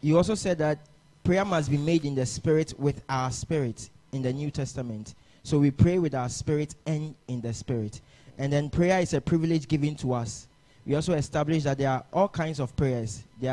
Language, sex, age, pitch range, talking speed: English, male, 20-39, 130-160 Hz, 215 wpm